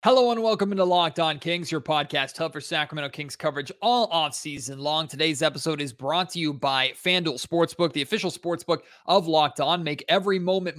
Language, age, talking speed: English, 30-49, 195 wpm